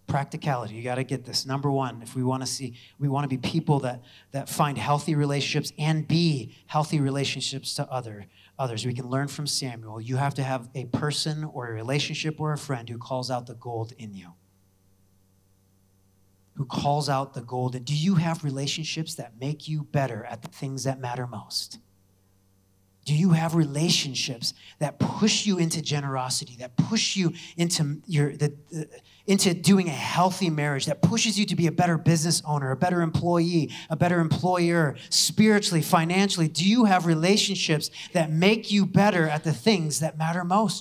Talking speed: 185 wpm